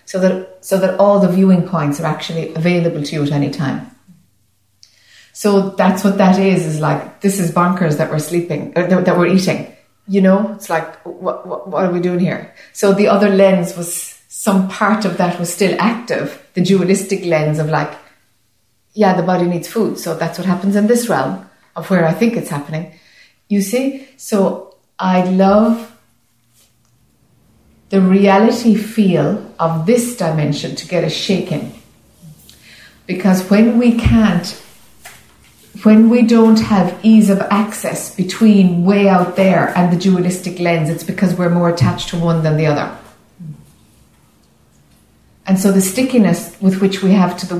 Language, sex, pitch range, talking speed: English, female, 170-200 Hz, 170 wpm